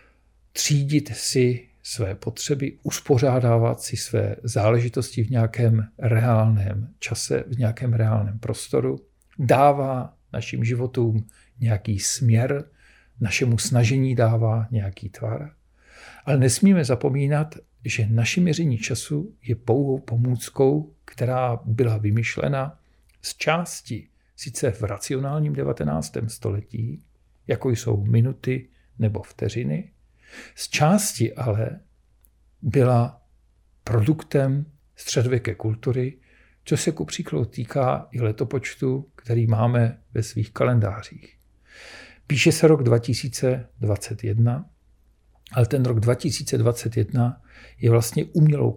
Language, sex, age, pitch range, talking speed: Czech, male, 50-69, 110-135 Hz, 100 wpm